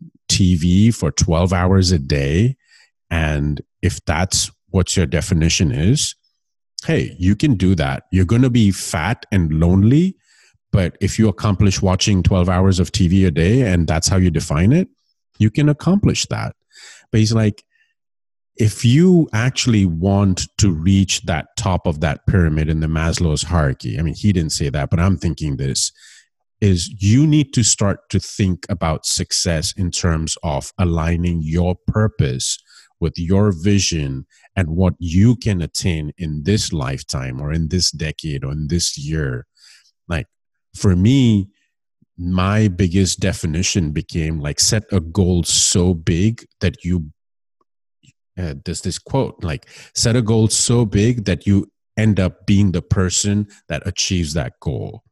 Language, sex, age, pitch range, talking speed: English, male, 30-49, 85-105 Hz, 155 wpm